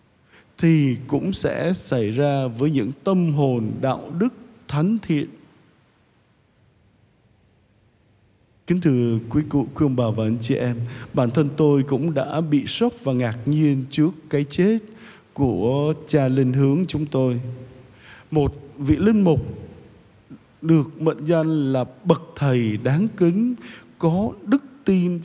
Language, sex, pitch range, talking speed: Vietnamese, male, 115-165 Hz, 140 wpm